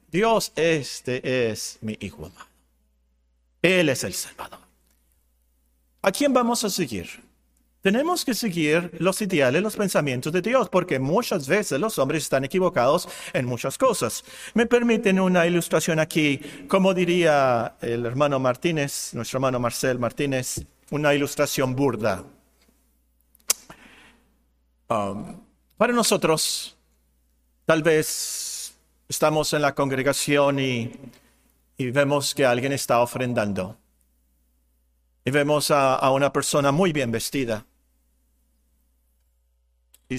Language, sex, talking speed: Spanish, male, 115 wpm